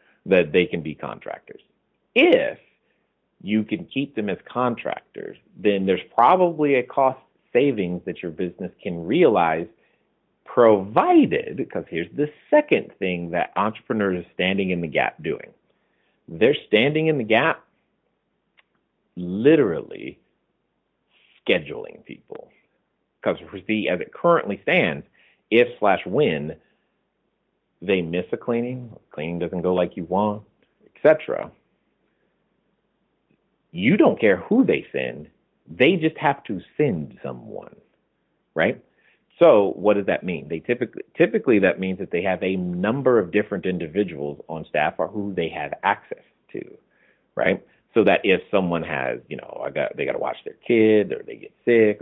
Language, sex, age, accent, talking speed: English, male, 40-59, American, 145 wpm